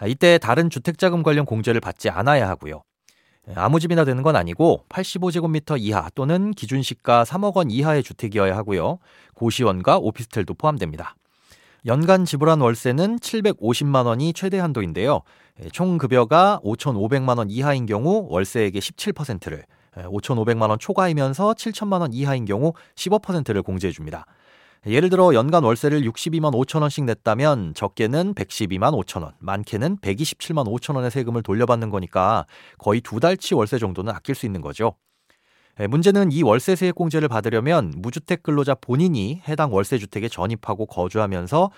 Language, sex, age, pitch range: Korean, male, 40-59, 110-165 Hz